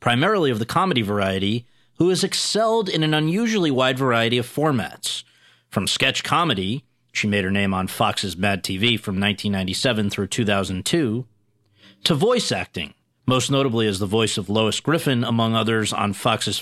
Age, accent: 40-59, American